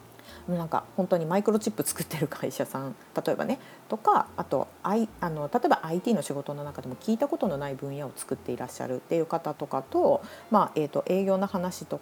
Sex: female